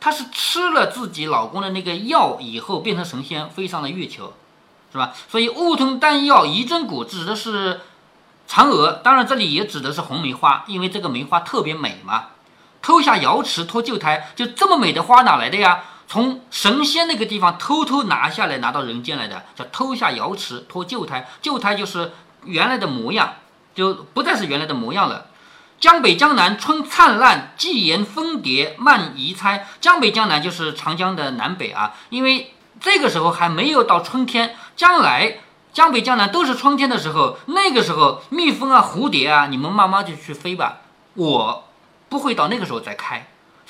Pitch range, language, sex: 180-290 Hz, Chinese, male